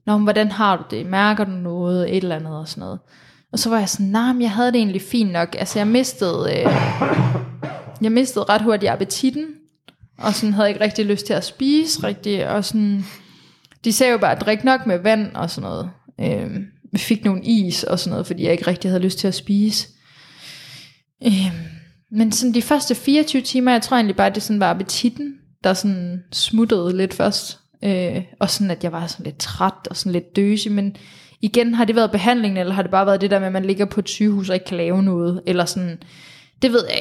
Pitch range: 175-215 Hz